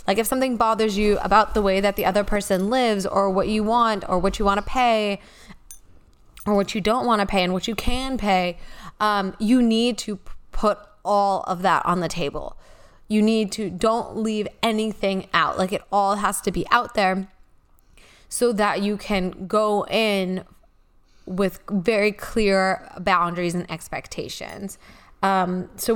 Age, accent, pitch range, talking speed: 20-39, American, 185-215 Hz, 175 wpm